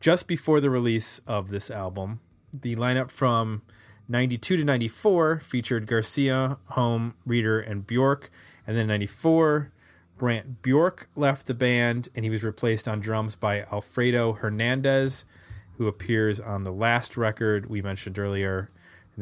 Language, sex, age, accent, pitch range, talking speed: English, male, 30-49, American, 105-125 Hz, 145 wpm